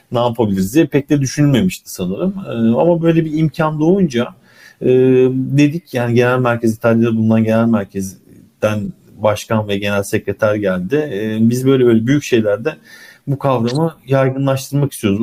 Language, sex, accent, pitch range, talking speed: Turkish, male, native, 110-135 Hz, 145 wpm